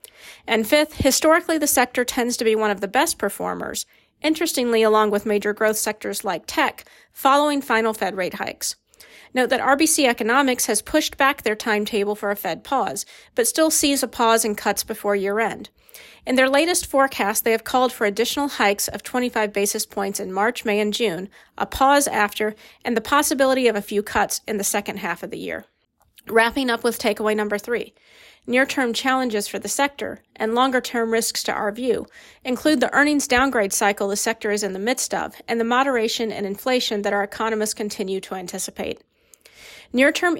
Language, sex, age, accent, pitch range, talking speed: English, female, 40-59, American, 210-265 Hz, 185 wpm